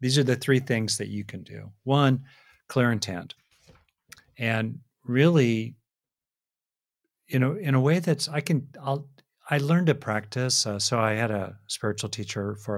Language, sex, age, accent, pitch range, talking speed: English, male, 50-69, American, 105-135 Hz, 160 wpm